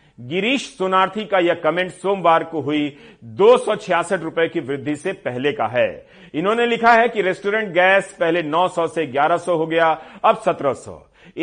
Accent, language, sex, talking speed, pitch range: native, Hindi, male, 160 wpm, 160-210 Hz